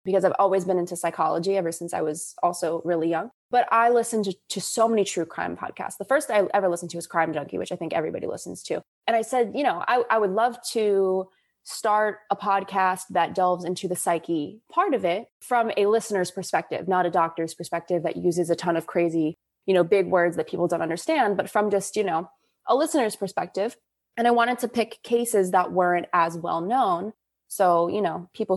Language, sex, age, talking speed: English, female, 20-39, 215 wpm